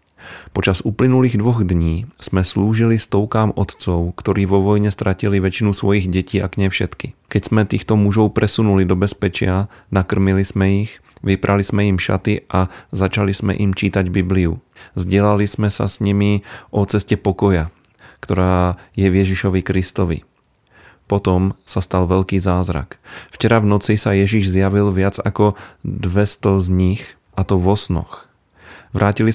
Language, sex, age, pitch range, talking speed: Slovak, male, 30-49, 90-105 Hz, 145 wpm